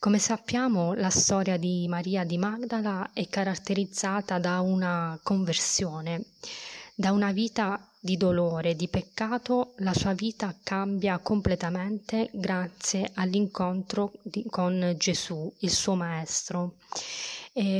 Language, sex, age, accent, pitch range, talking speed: Italian, female, 20-39, native, 180-215 Hz, 110 wpm